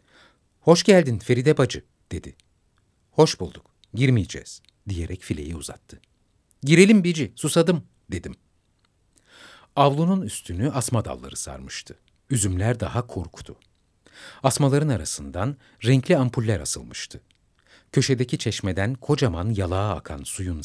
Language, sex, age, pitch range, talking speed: Turkish, male, 60-79, 90-135 Hz, 100 wpm